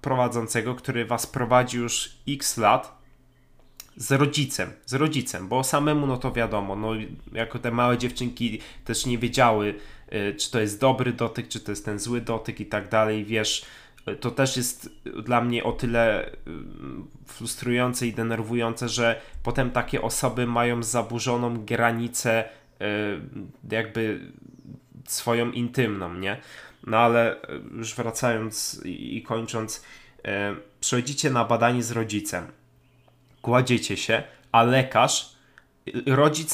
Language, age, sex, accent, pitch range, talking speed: Polish, 20-39, male, native, 110-130 Hz, 125 wpm